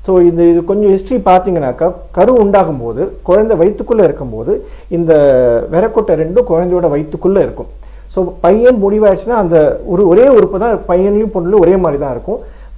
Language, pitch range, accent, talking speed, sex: Tamil, 160-210 Hz, native, 155 wpm, male